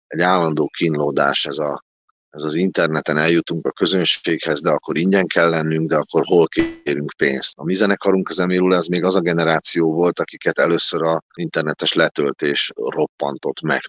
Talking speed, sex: 170 wpm, male